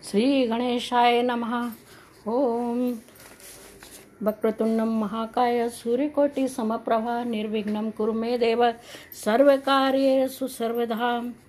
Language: Hindi